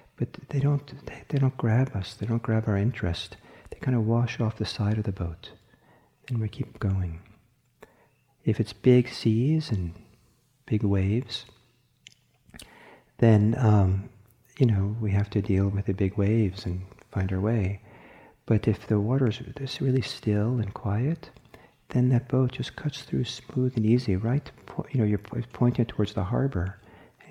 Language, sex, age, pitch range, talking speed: English, male, 50-69, 100-125 Hz, 175 wpm